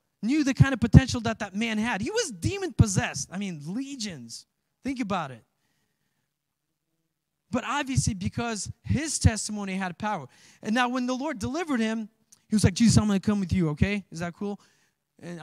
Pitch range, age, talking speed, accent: 170-230 Hz, 20-39, 185 wpm, American